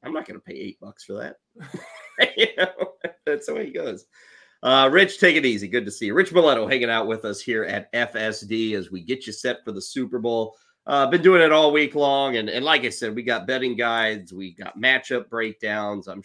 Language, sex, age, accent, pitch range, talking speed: English, male, 30-49, American, 105-150 Hz, 240 wpm